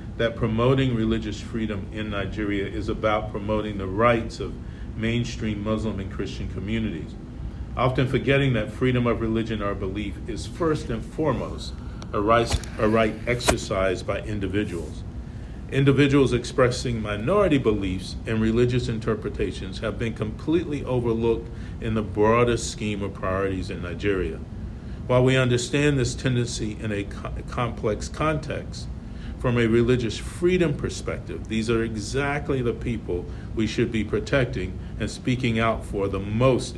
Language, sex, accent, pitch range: English, male, American, 100-125 Hz